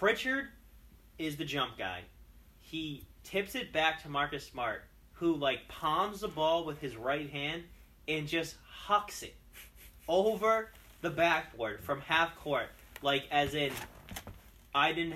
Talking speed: 145 wpm